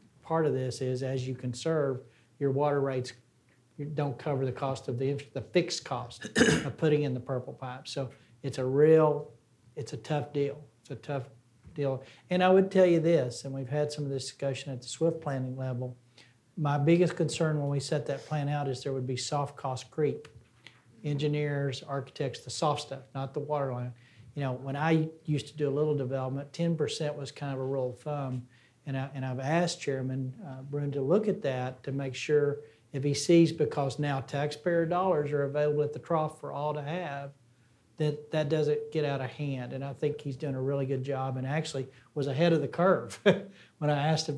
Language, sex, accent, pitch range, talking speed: English, male, American, 130-150 Hz, 210 wpm